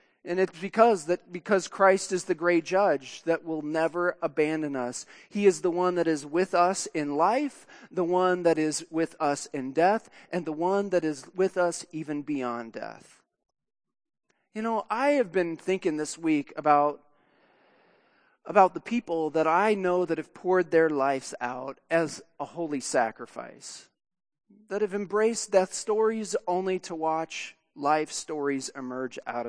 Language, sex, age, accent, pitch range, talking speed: English, male, 40-59, American, 150-190 Hz, 165 wpm